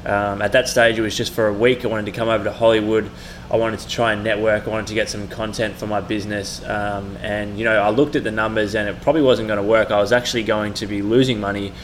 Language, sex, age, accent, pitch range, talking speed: English, male, 20-39, Australian, 105-115 Hz, 280 wpm